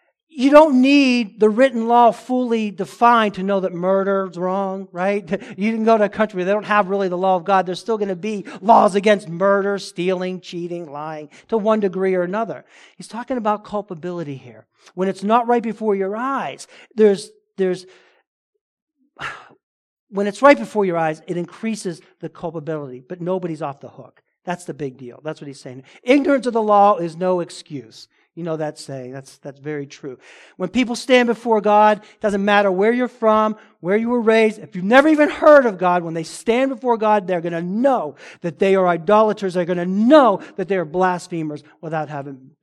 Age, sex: 50-69, male